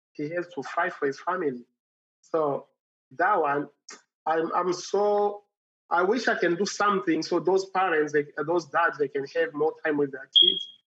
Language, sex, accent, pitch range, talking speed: English, male, Nigerian, 150-200 Hz, 180 wpm